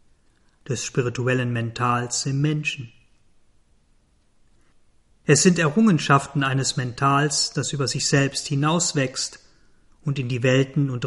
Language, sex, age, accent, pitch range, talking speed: German, male, 40-59, German, 125-150 Hz, 110 wpm